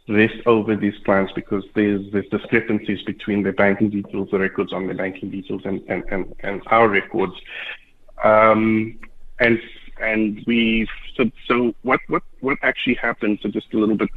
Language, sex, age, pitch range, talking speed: English, male, 50-69, 100-120 Hz, 155 wpm